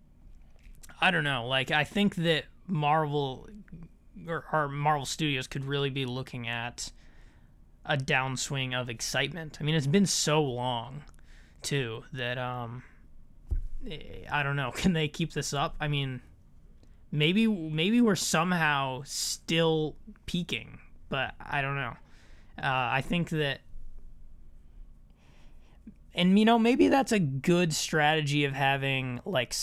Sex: male